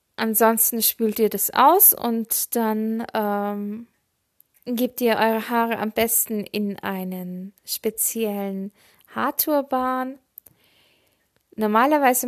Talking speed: 95 wpm